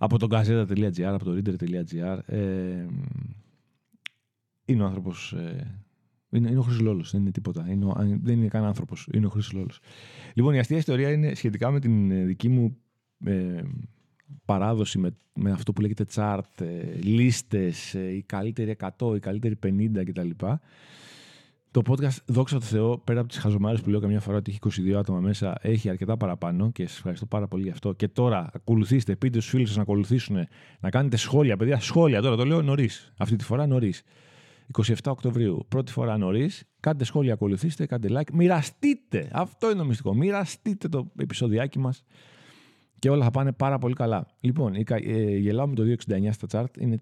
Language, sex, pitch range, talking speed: Greek, male, 100-130 Hz, 175 wpm